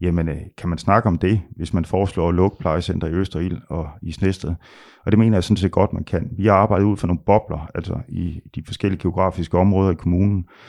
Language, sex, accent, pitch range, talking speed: Danish, male, native, 85-100 Hz, 235 wpm